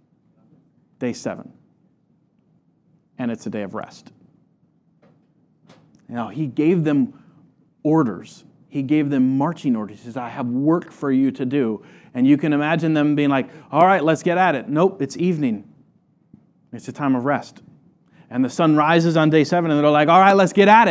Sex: male